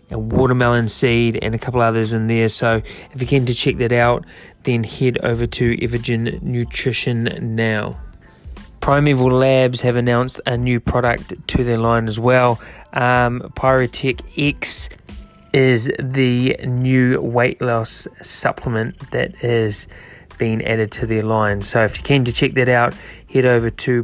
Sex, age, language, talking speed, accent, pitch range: male, 20-39, English, 155 wpm, Australian, 115-125 Hz